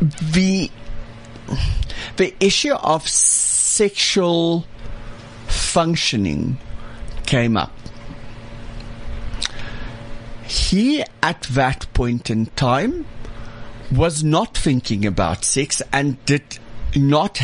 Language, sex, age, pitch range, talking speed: English, male, 60-79, 115-145 Hz, 75 wpm